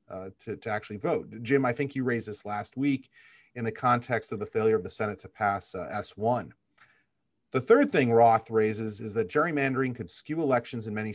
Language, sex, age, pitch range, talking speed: English, male, 40-59, 105-135 Hz, 210 wpm